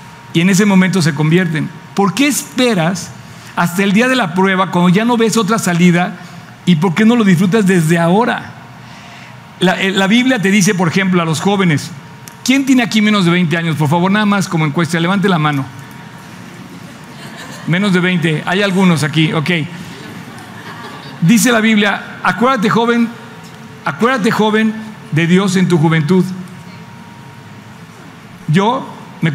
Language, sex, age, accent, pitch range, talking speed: Spanish, male, 50-69, Mexican, 155-195 Hz, 155 wpm